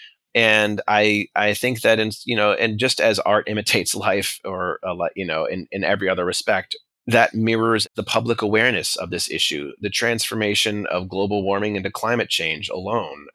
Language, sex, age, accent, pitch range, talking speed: English, male, 30-49, American, 95-115 Hz, 175 wpm